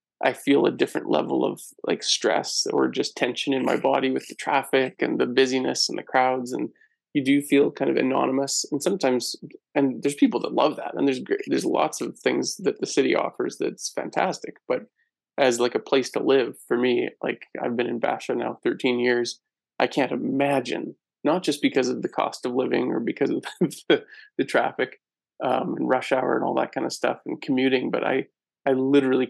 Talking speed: 205 wpm